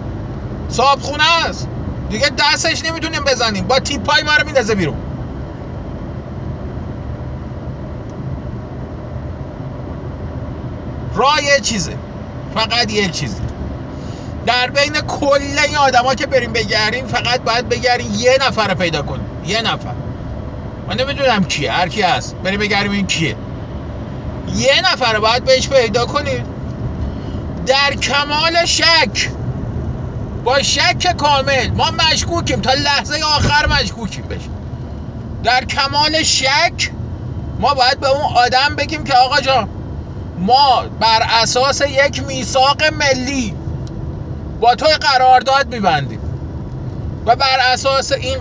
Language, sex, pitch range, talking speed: Persian, male, 245-290 Hz, 115 wpm